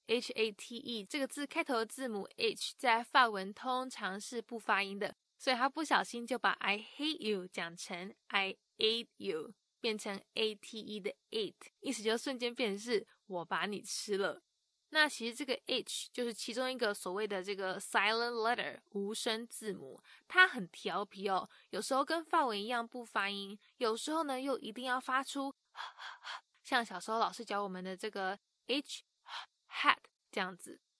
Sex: female